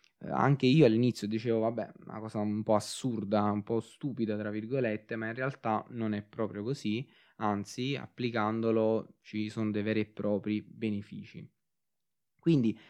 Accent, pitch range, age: native, 105-130 Hz, 20-39